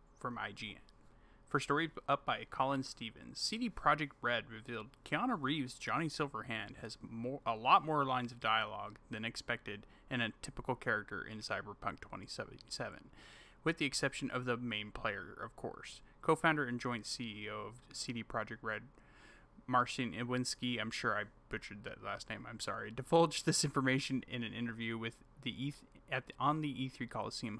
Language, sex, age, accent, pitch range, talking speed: English, male, 30-49, American, 115-135 Hz, 165 wpm